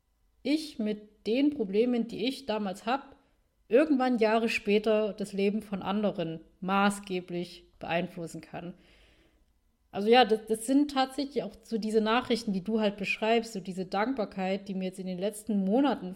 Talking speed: 155 wpm